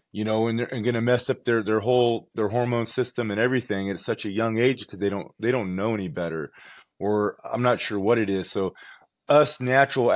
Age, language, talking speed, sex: 30-49, English, 230 wpm, male